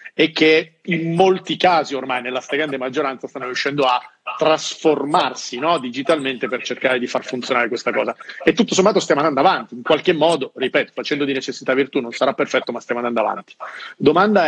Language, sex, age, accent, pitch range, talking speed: Italian, male, 40-59, native, 135-165 Hz, 180 wpm